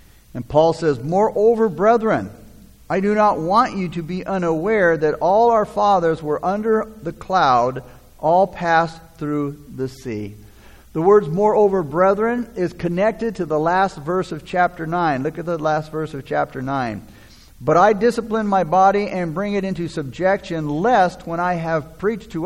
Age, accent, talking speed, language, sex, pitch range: 50-69, American, 170 wpm, English, male, 150-210 Hz